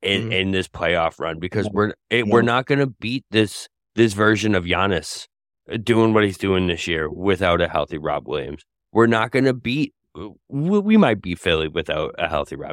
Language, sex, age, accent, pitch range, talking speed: English, male, 30-49, American, 90-115 Hz, 200 wpm